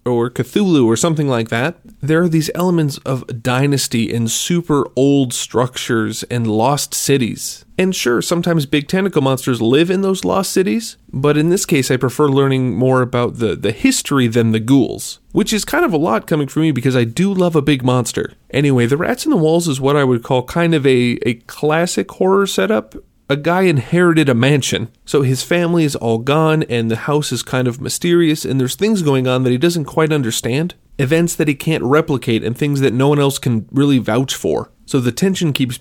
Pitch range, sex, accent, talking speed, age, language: 125-160 Hz, male, American, 210 wpm, 30-49, English